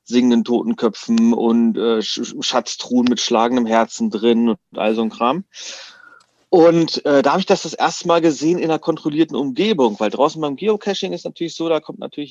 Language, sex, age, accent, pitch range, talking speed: German, male, 40-59, German, 115-160 Hz, 185 wpm